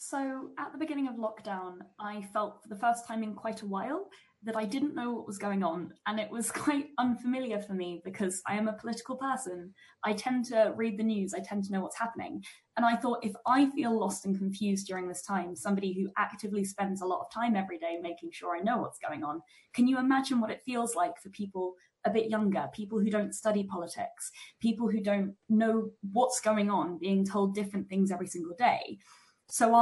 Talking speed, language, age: 220 wpm, English, 20-39